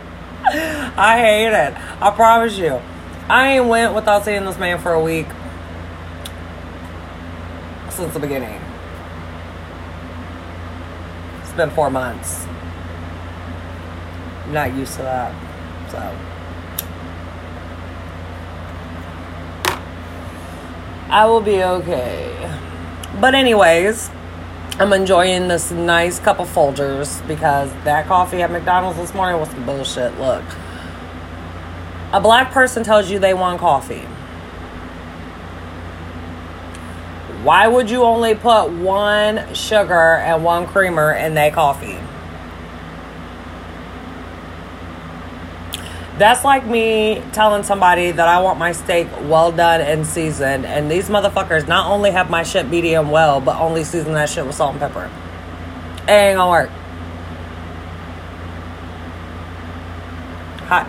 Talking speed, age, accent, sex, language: 110 wpm, 30-49, American, female, English